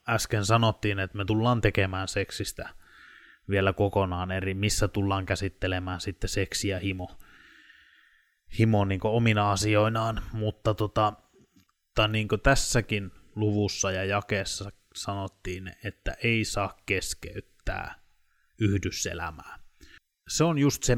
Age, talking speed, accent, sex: 20-39, 95 wpm, native, male